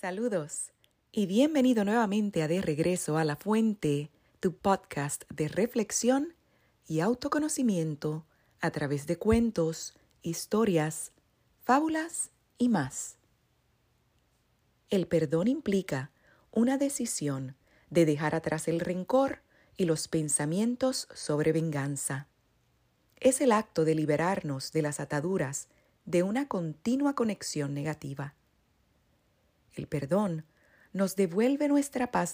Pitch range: 150-215 Hz